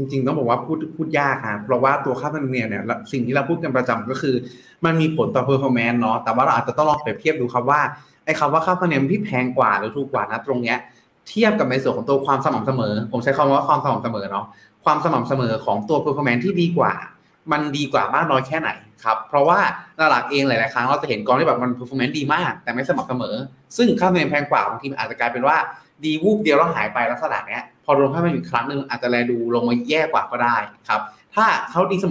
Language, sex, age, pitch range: Thai, male, 20-39, 125-165 Hz